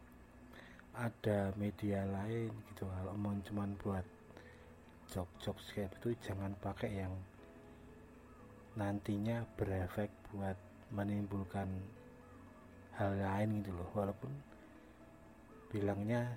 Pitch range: 95-110 Hz